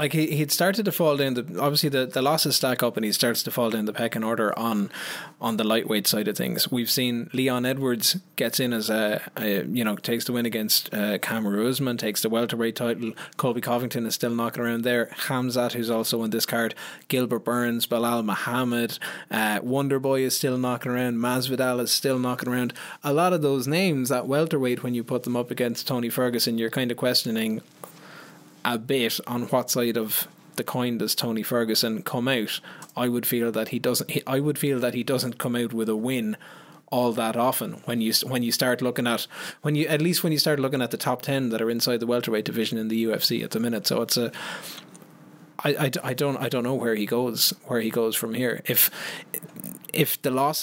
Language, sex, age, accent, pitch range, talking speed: English, male, 20-39, Irish, 115-135 Hz, 220 wpm